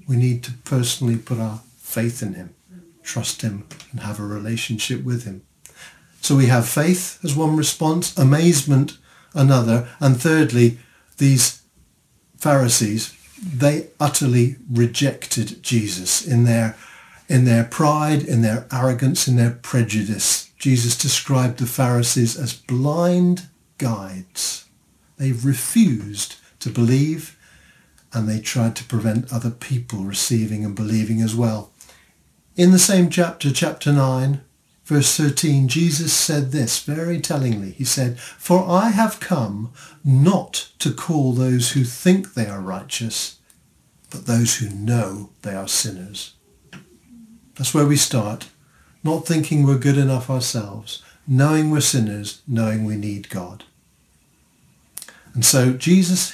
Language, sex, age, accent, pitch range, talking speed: English, male, 50-69, British, 115-150 Hz, 130 wpm